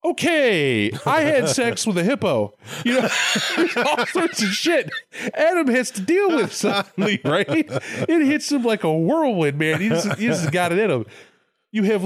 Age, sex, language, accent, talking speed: 20-39, male, English, American, 185 wpm